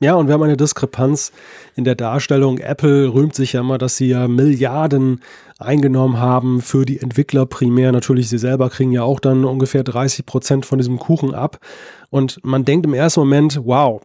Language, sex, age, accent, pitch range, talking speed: German, male, 30-49, German, 130-155 Hz, 190 wpm